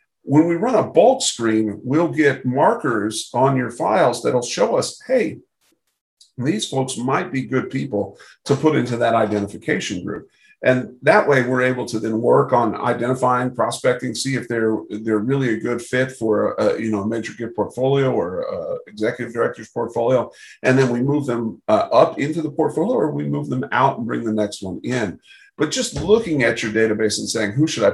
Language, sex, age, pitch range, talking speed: English, male, 50-69, 105-130 Hz, 200 wpm